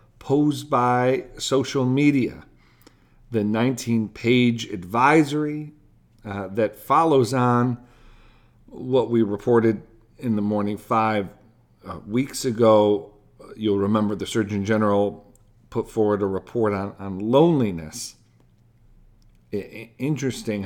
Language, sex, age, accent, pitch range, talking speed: English, male, 50-69, American, 105-130 Hz, 100 wpm